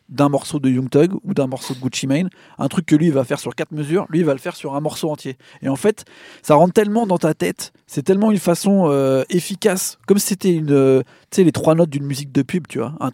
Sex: male